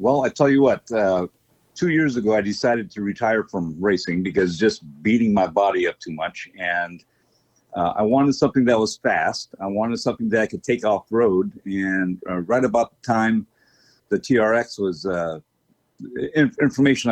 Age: 50-69